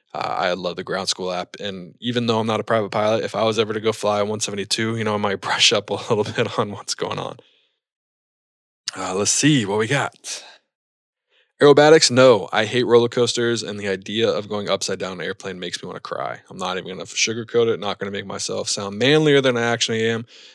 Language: English